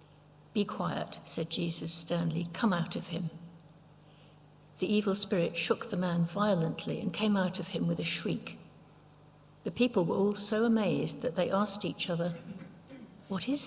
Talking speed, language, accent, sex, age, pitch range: 160 wpm, English, British, female, 60-79, 160-200 Hz